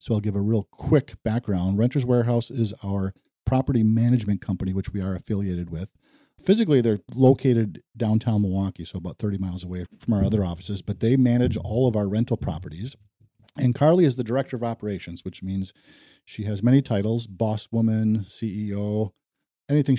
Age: 40-59